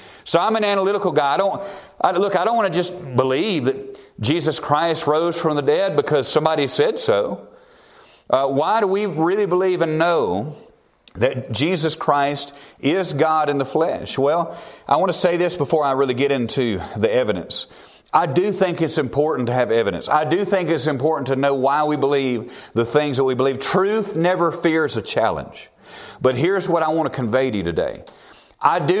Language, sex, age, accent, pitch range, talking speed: English, male, 40-59, American, 140-180 Hz, 195 wpm